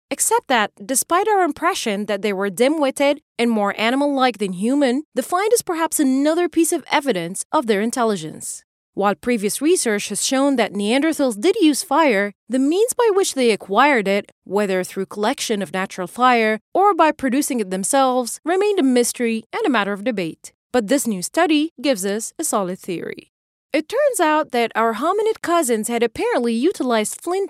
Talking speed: 175 wpm